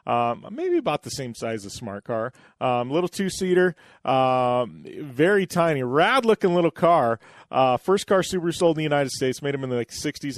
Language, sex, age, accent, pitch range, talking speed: English, male, 30-49, American, 125-180 Hz, 200 wpm